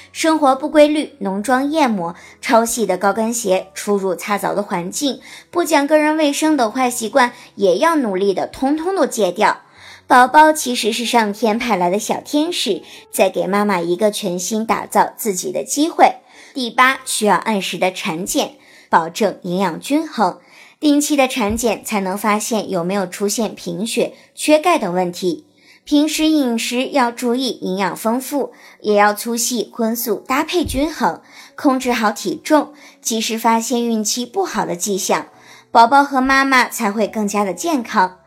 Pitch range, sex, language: 205-280 Hz, male, Chinese